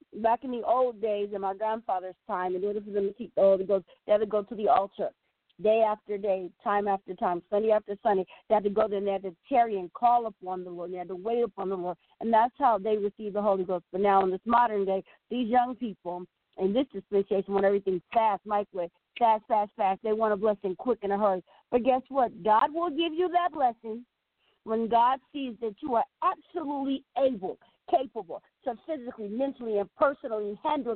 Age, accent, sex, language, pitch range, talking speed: 50-69, American, female, English, 195-245 Hz, 225 wpm